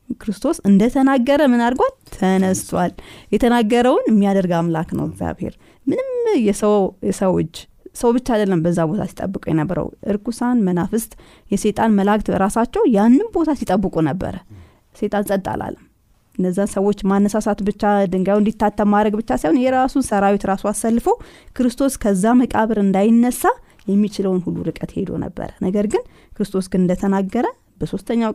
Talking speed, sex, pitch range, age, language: 120 wpm, female, 185-240 Hz, 20-39, Amharic